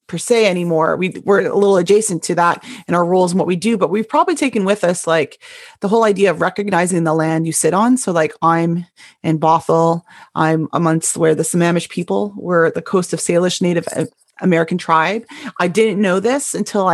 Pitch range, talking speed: 170-215 Hz, 210 wpm